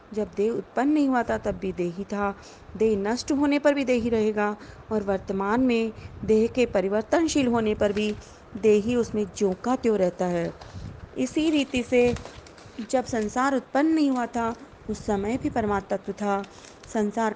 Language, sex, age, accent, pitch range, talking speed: Hindi, female, 30-49, native, 205-250 Hz, 170 wpm